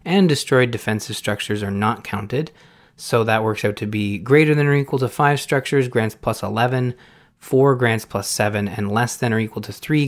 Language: English